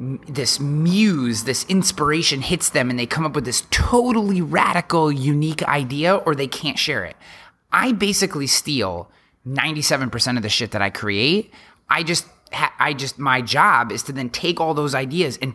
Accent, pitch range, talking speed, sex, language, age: American, 120-165 Hz, 175 wpm, male, English, 30-49